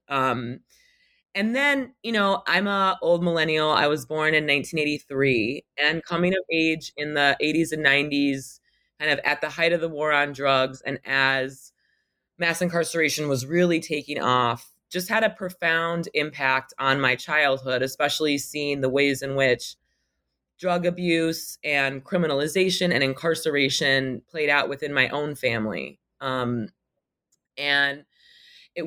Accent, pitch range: American, 135-165 Hz